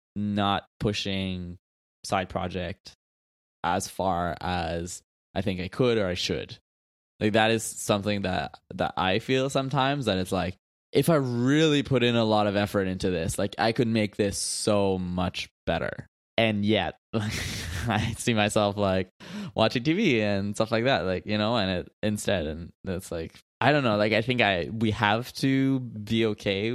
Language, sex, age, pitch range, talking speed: English, male, 20-39, 95-115 Hz, 175 wpm